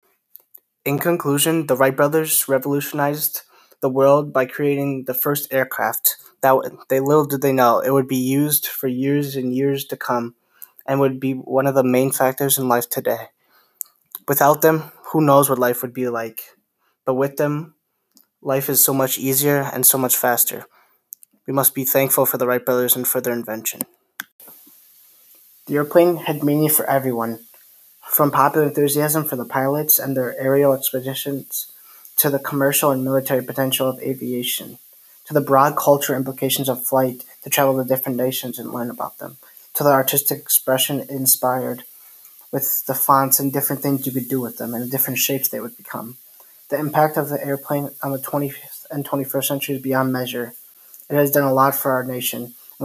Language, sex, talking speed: English, male, 180 wpm